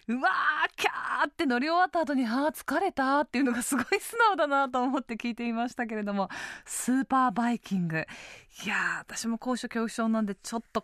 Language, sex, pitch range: Japanese, female, 230-360 Hz